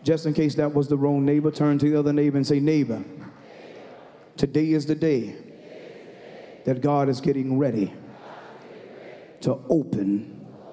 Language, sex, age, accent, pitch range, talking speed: English, male, 30-49, American, 130-155 Hz, 150 wpm